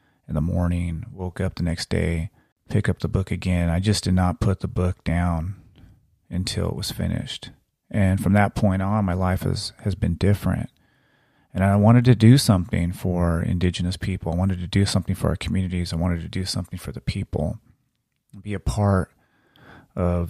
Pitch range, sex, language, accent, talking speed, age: 90-105 Hz, male, English, American, 190 wpm, 30-49